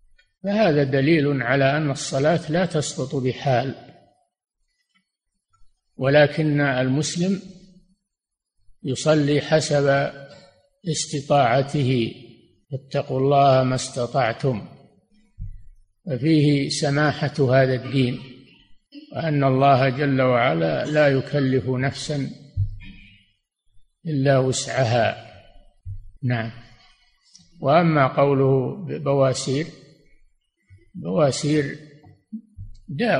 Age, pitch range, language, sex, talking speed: 60-79, 125-150 Hz, Arabic, male, 65 wpm